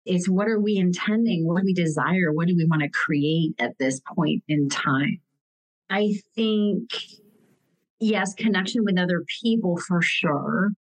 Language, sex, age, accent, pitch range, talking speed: English, female, 40-59, American, 160-205 Hz, 160 wpm